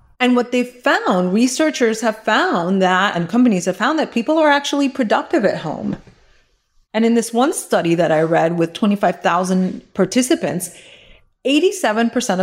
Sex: female